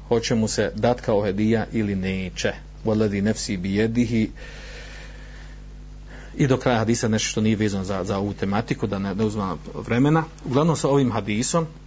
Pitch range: 110-140 Hz